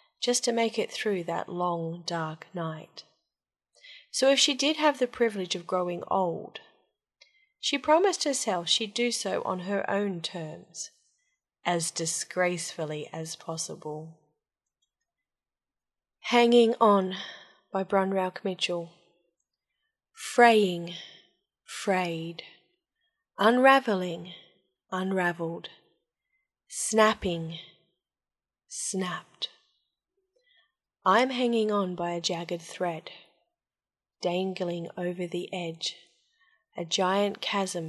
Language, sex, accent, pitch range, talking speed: English, female, Australian, 170-230 Hz, 90 wpm